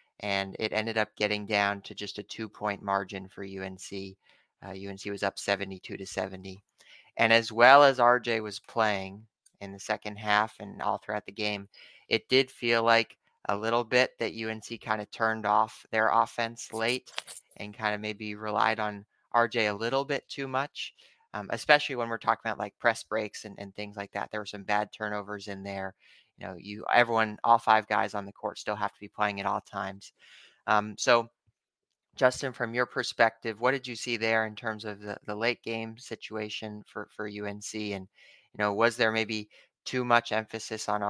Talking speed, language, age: 200 wpm, English, 30-49